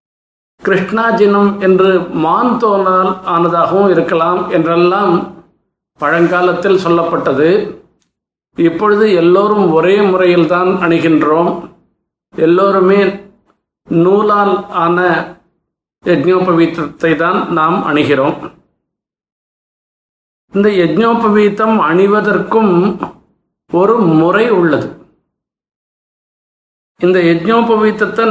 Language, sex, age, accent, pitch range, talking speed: Tamil, male, 50-69, native, 170-210 Hz, 65 wpm